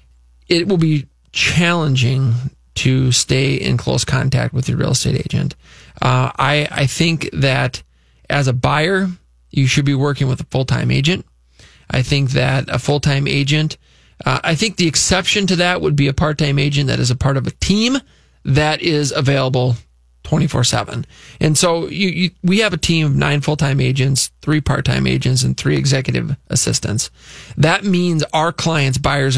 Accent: American